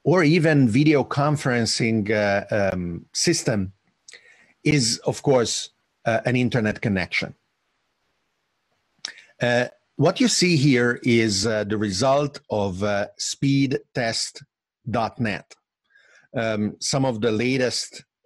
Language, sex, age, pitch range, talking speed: English, male, 50-69, 115-150 Hz, 100 wpm